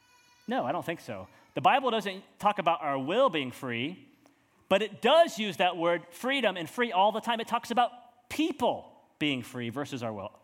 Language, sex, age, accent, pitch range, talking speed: English, male, 30-49, American, 165-230 Hz, 200 wpm